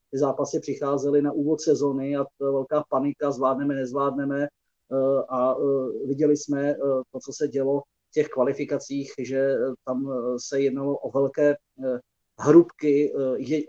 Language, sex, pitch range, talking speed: Czech, male, 130-145 Hz, 125 wpm